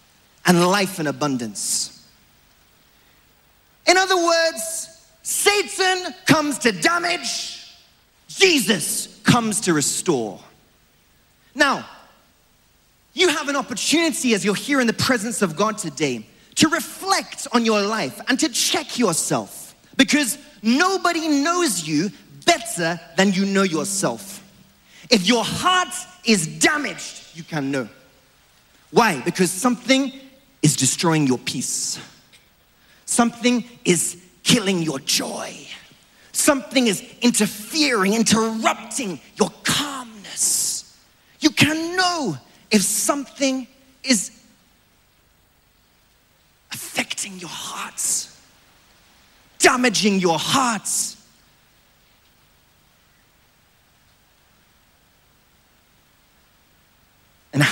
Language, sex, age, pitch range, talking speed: English, male, 30-49, 180-280 Hz, 90 wpm